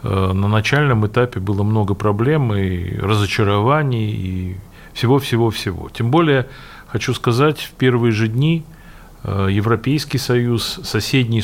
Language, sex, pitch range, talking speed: Russian, male, 105-135 Hz, 110 wpm